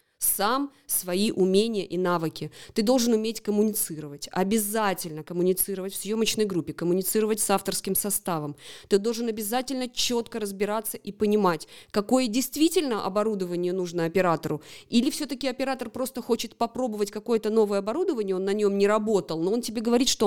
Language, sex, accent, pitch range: Russian, female, native, 185-230 Hz